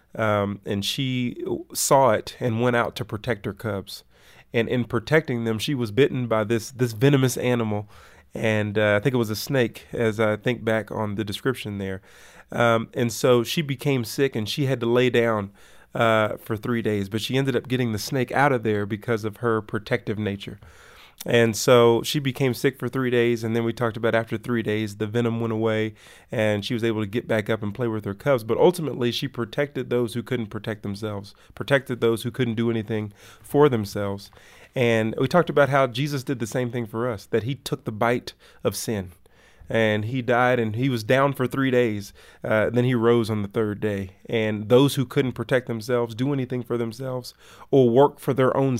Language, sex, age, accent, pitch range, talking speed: English, male, 30-49, American, 110-130 Hz, 215 wpm